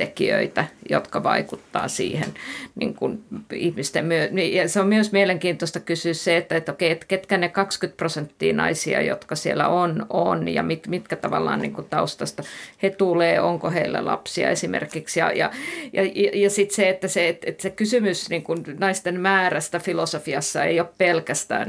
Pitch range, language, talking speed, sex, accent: 170-200 Hz, Finnish, 160 wpm, female, native